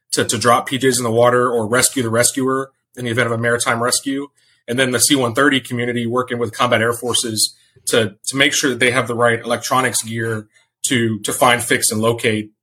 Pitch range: 115-130 Hz